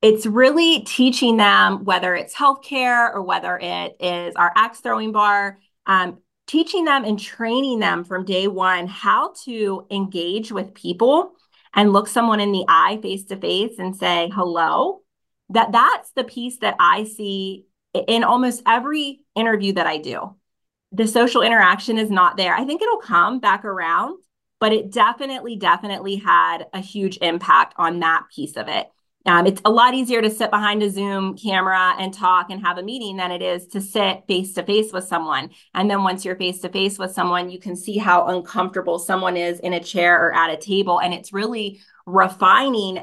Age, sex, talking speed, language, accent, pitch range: 20-39, female, 180 wpm, English, American, 185-230 Hz